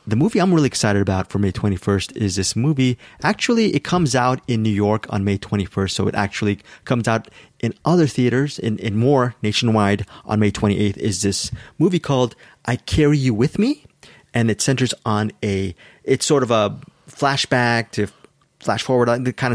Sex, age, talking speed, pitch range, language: male, 30-49, 190 wpm, 105-135 Hz, English